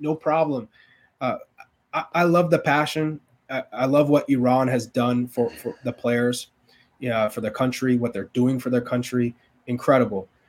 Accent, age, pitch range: American, 20-39, 120-160 Hz